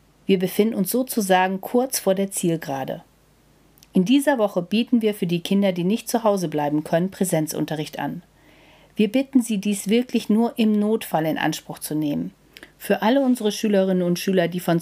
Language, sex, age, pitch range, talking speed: German, female, 40-59, 170-225 Hz, 180 wpm